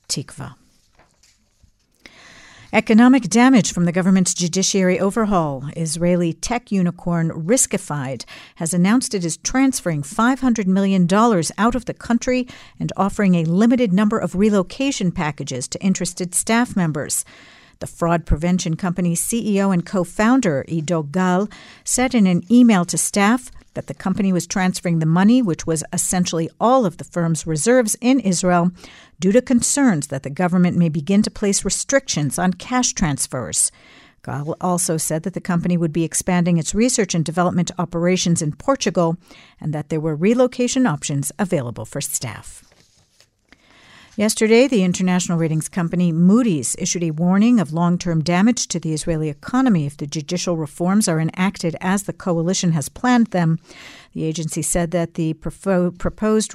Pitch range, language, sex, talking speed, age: 165-215 Hz, English, female, 150 wpm, 50-69